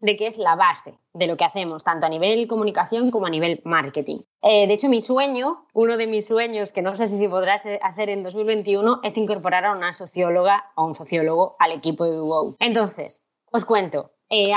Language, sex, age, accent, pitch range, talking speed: Spanish, female, 20-39, Spanish, 175-230 Hz, 205 wpm